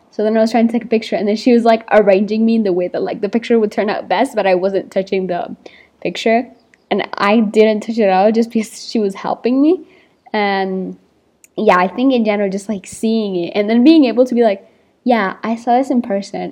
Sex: female